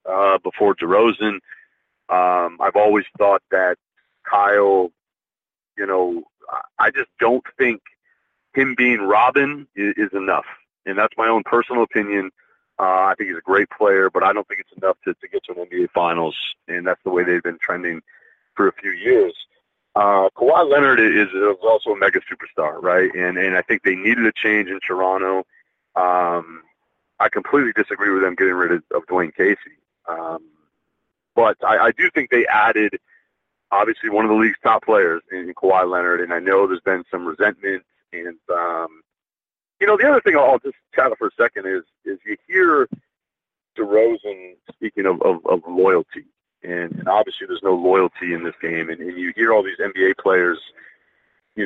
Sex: male